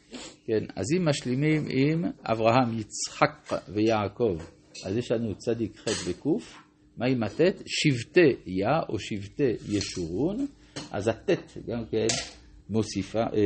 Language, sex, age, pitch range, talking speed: Hebrew, male, 50-69, 100-135 Hz, 120 wpm